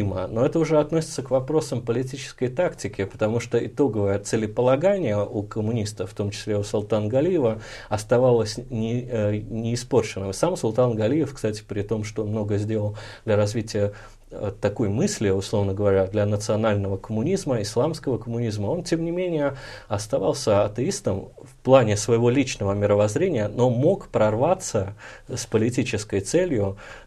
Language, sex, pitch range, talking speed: Russian, male, 105-125 Hz, 135 wpm